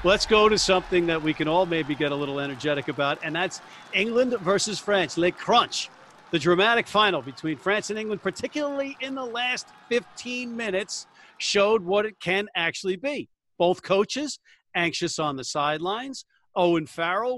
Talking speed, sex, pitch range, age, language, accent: 165 wpm, male, 165-235 Hz, 50-69, English, American